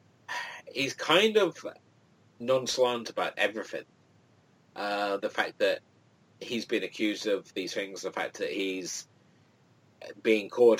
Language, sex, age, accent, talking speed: English, male, 30-49, British, 120 wpm